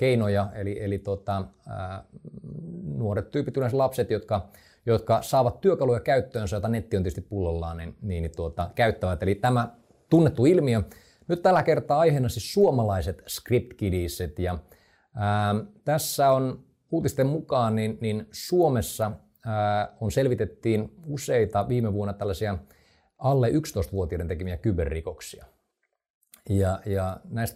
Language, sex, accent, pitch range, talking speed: Finnish, male, native, 95-120 Hz, 120 wpm